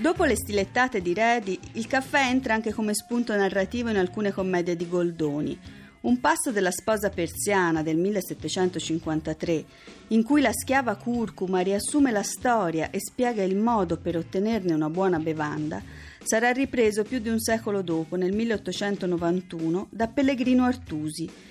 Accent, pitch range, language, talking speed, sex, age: native, 175-235 Hz, Italian, 150 wpm, female, 30-49